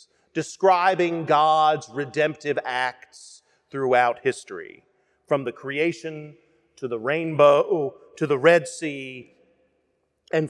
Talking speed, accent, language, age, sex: 95 wpm, American, English, 40-59, male